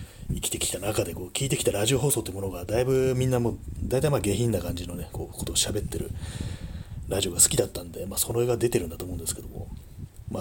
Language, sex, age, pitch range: Japanese, male, 30-49, 90-120 Hz